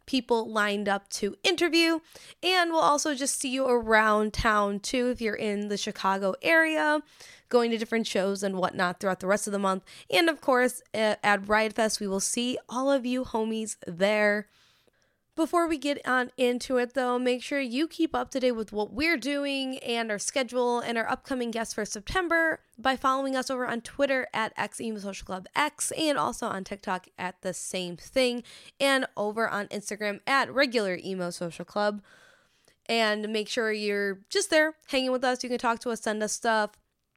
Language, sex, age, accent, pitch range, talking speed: English, female, 20-39, American, 205-260 Hz, 190 wpm